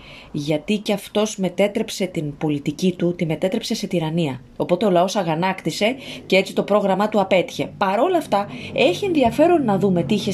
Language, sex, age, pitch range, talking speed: Greek, female, 30-49, 175-270 Hz, 170 wpm